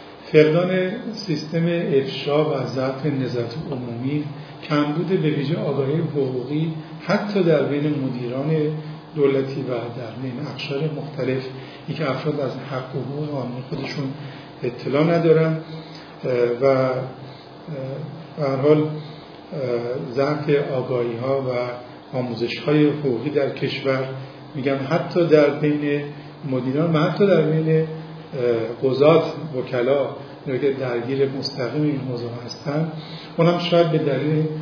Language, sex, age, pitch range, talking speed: Persian, male, 50-69, 130-155 Hz, 105 wpm